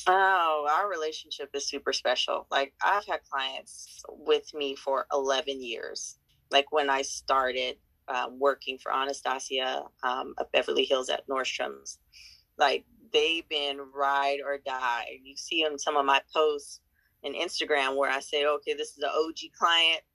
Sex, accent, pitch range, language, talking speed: female, American, 140-165 Hz, English, 160 wpm